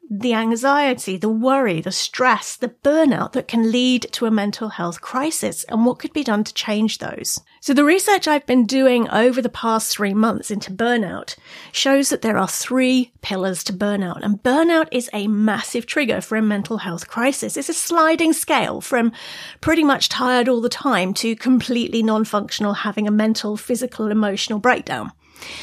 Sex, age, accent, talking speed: female, 40-59, British, 180 wpm